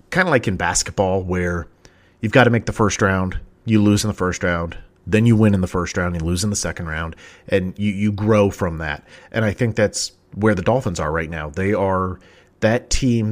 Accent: American